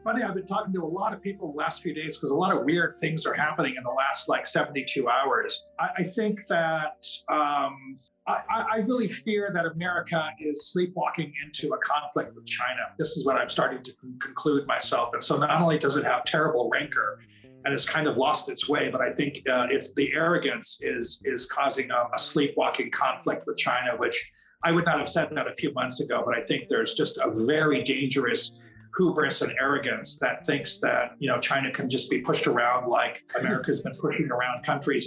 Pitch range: 145-205 Hz